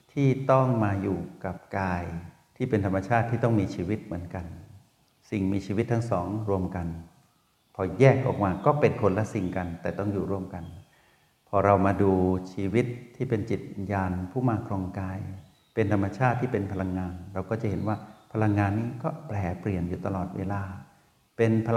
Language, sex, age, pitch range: Thai, male, 60-79, 95-115 Hz